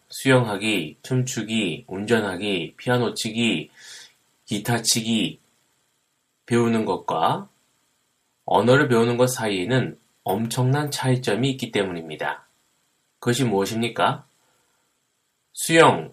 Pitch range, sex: 115-135 Hz, male